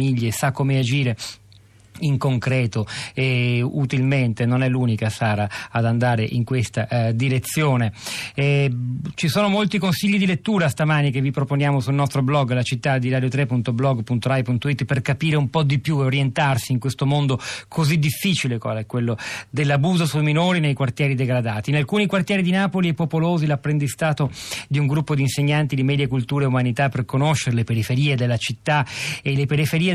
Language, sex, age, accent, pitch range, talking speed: Italian, male, 40-59, native, 125-150 Hz, 165 wpm